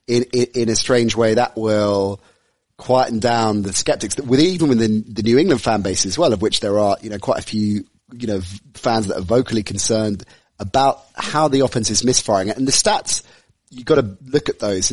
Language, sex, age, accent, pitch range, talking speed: English, male, 30-49, British, 105-120 Hz, 215 wpm